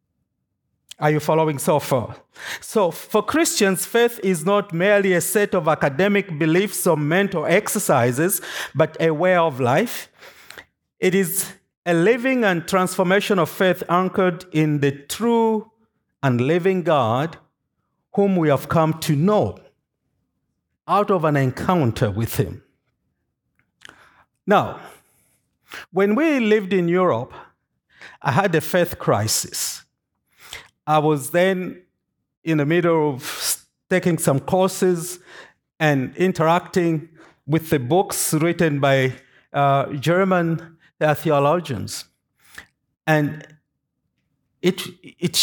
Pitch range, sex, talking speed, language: 140-185 Hz, male, 115 wpm, English